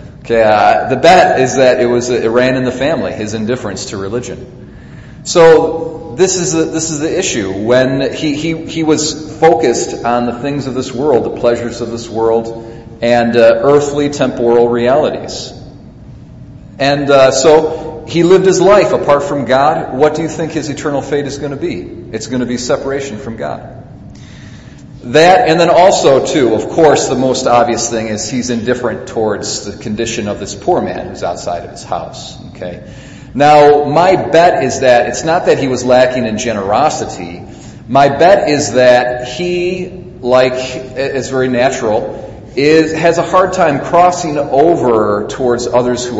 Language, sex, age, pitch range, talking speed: English, male, 40-59, 120-150 Hz, 175 wpm